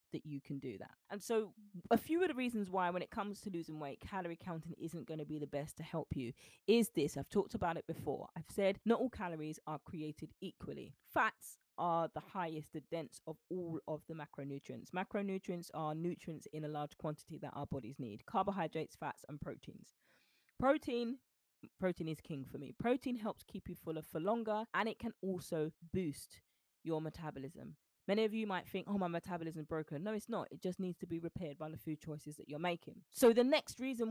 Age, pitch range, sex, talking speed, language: 20-39, 160-220 Hz, female, 210 wpm, English